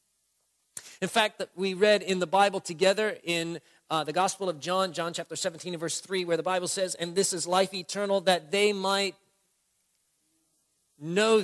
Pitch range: 190-255 Hz